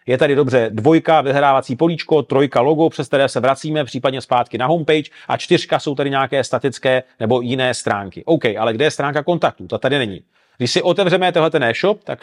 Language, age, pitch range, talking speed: Czech, 40-59, 135-165 Hz, 200 wpm